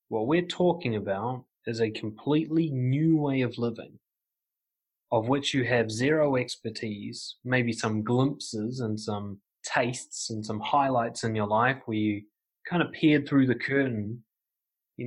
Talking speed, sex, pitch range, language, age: 150 wpm, male, 110-130 Hz, English, 20-39